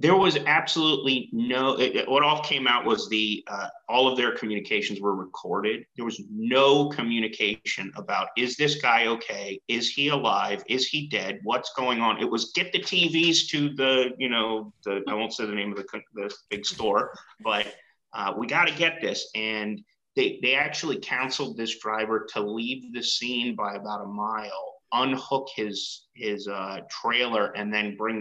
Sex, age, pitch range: male, 30-49, 105-145 Hz